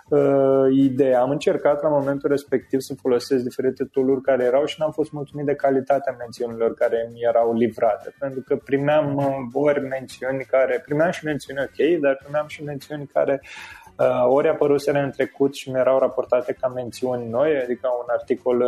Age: 20-39